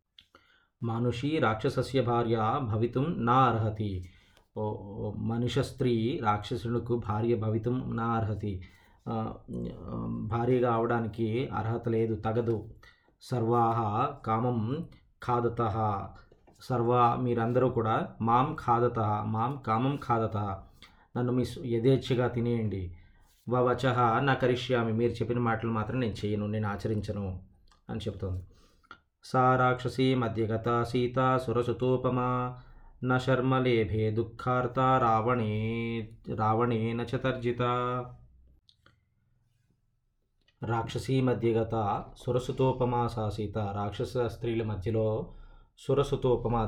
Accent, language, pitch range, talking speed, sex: native, Telugu, 105-125 Hz, 70 wpm, male